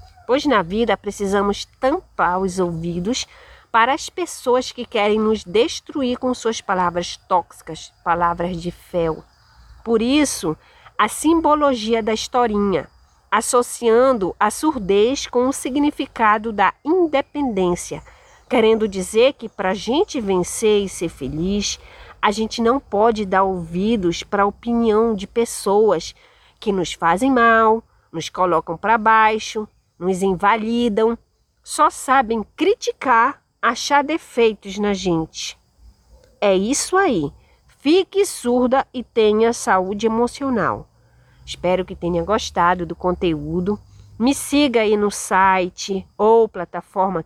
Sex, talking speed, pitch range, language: female, 120 wpm, 180-245 Hz, Portuguese